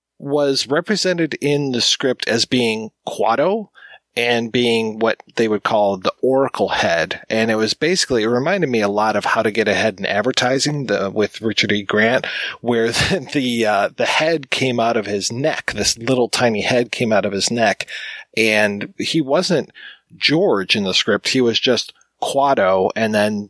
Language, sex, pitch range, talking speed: English, male, 110-135 Hz, 180 wpm